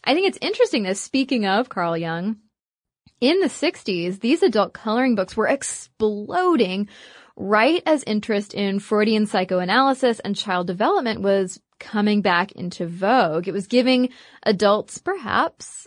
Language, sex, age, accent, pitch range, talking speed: English, female, 20-39, American, 195-260 Hz, 140 wpm